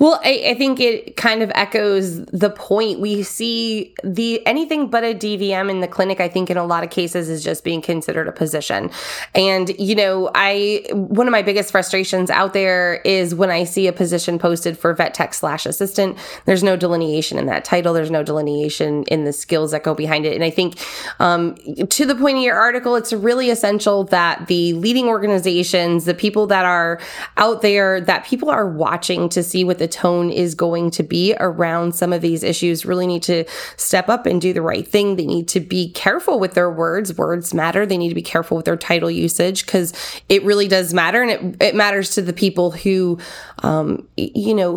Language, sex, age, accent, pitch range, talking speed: English, female, 20-39, American, 175-210 Hz, 210 wpm